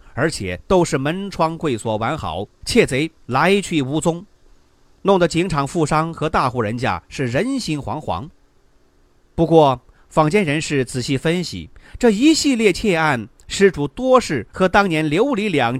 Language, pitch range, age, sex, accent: Chinese, 125-190 Hz, 30-49, male, native